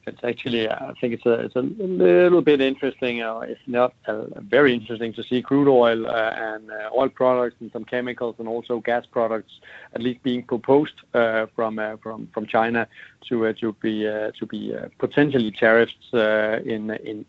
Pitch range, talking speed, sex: 110-125 Hz, 195 wpm, male